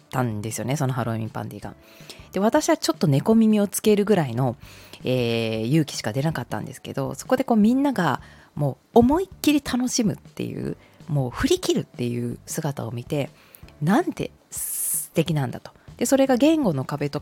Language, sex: Japanese, female